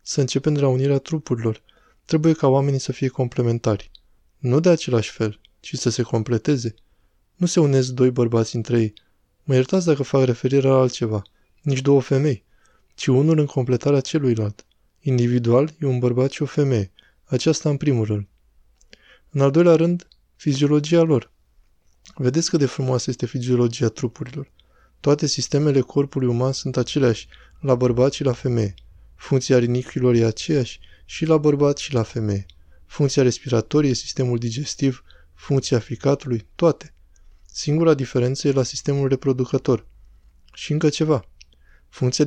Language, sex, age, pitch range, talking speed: Romanian, male, 20-39, 110-145 Hz, 150 wpm